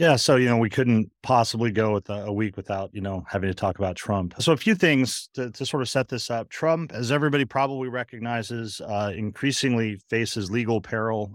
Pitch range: 105-130 Hz